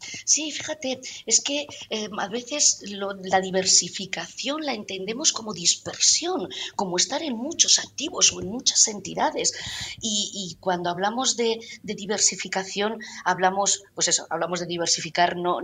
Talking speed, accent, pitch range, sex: 140 wpm, Spanish, 175-240 Hz, female